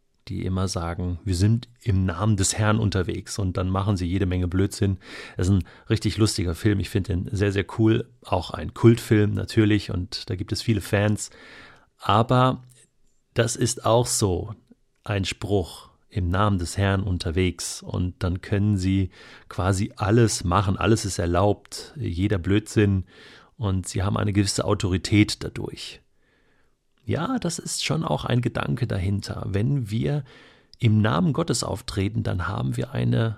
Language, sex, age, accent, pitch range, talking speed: German, male, 30-49, German, 95-115 Hz, 160 wpm